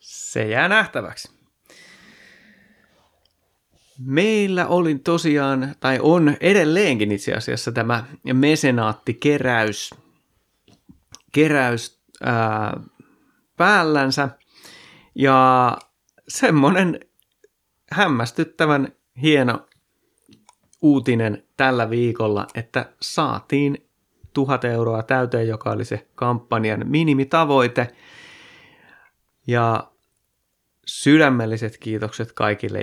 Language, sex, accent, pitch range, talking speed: Finnish, male, native, 110-140 Hz, 70 wpm